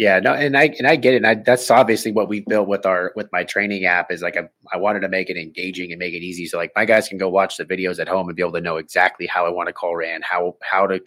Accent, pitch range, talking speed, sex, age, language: American, 100-120 Hz, 325 wpm, male, 30-49, English